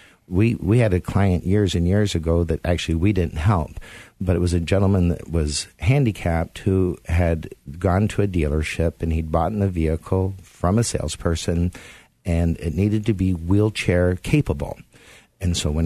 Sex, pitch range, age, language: male, 85-100 Hz, 50-69, English